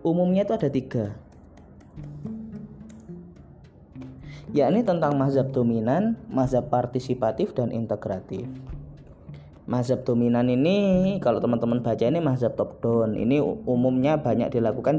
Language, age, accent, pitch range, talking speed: Indonesian, 20-39, native, 125-170 Hz, 100 wpm